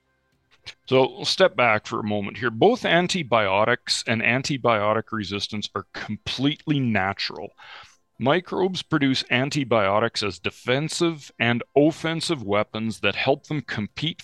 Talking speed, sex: 120 wpm, male